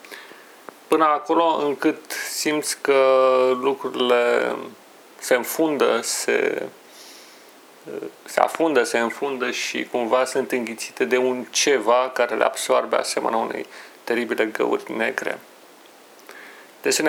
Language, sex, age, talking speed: Romanian, male, 30-49, 100 wpm